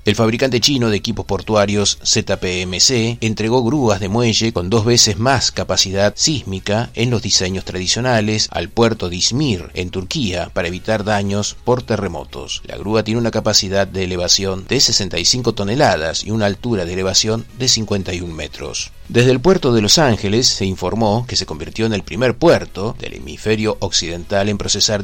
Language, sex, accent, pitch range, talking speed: Spanish, male, Argentinian, 95-115 Hz, 170 wpm